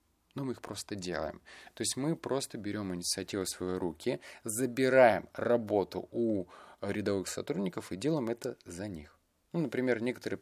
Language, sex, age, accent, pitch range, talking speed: Russian, male, 30-49, native, 90-115 Hz, 155 wpm